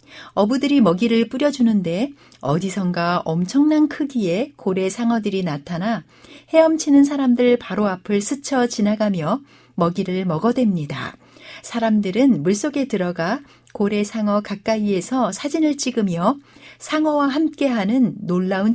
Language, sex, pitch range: Korean, female, 185-255 Hz